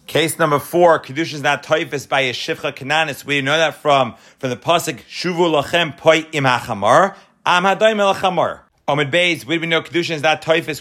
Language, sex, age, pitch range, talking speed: English, male, 40-59, 135-180 Hz, 185 wpm